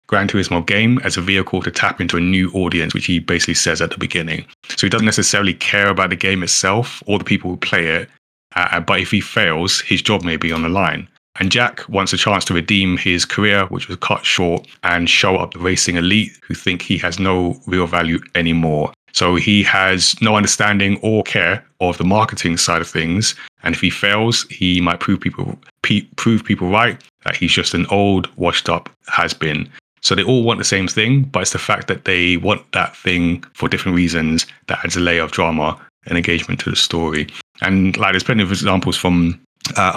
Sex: male